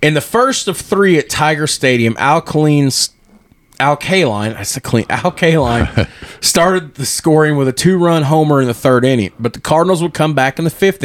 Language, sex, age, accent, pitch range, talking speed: English, male, 30-49, American, 120-150 Hz, 170 wpm